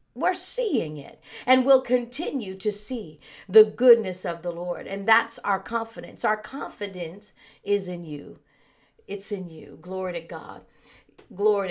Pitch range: 175-240 Hz